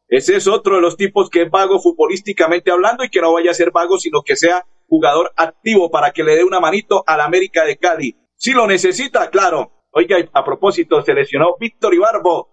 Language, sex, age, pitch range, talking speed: Spanish, male, 50-69, 165-225 Hz, 210 wpm